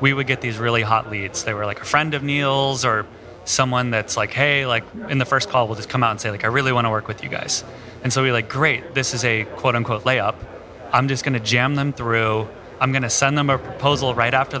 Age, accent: 30-49, American